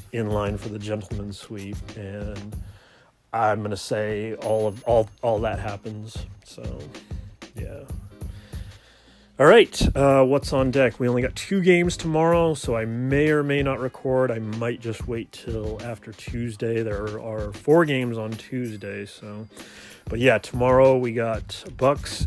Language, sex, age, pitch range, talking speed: English, male, 30-49, 105-130 Hz, 155 wpm